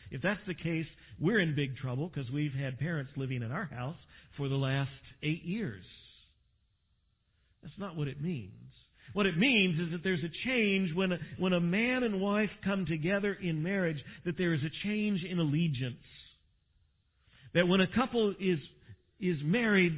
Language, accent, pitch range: English, American, 120-180 Hz